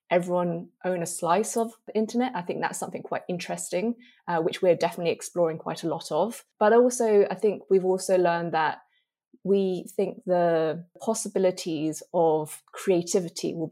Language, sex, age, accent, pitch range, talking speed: English, female, 20-39, British, 165-205 Hz, 160 wpm